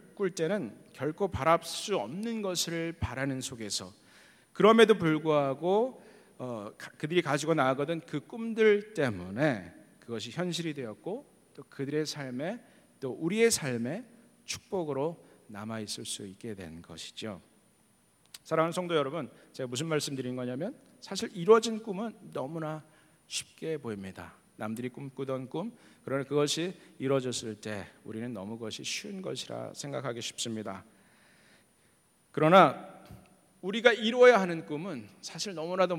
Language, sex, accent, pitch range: Korean, male, native, 120-175 Hz